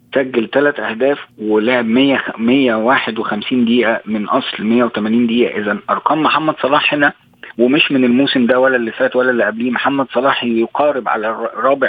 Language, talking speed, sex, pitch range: Arabic, 150 wpm, male, 115-130 Hz